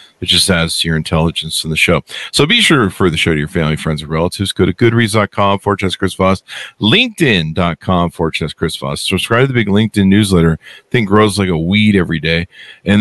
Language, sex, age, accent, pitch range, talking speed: English, male, 50-69, American, 90-130 Hz, 220 wpm